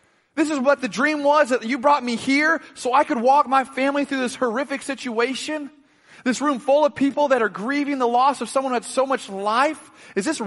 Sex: male